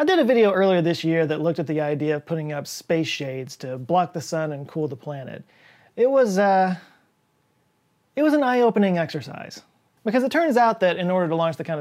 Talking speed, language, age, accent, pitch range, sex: 225 wpm, English, 30-49, American, 155-210 Hz, male